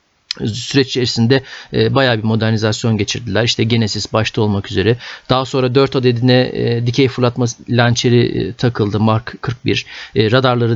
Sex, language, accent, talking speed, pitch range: male, Turkish, native, 125 wpm, 115-150 Hz